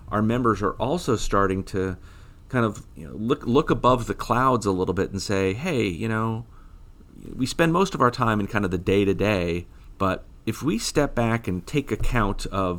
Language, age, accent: English, 40-59, American